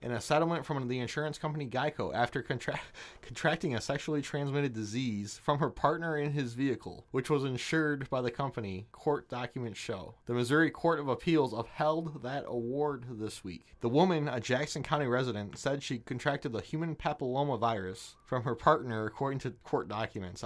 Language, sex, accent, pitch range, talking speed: English, male, American, 120-145 Hz, 170 wpm